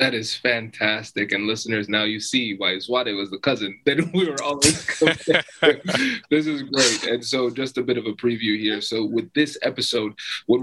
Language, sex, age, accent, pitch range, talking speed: English, male, 20-39, American, 110-140 Hz, 190 wpm